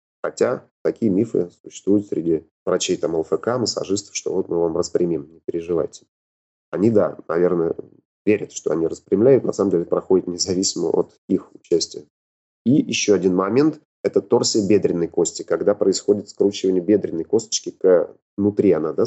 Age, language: 30-49, Russian